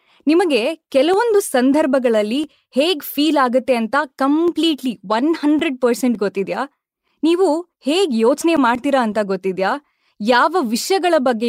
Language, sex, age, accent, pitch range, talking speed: Kannada, female, 20-39, native, 225-315 Hz, 110 wpm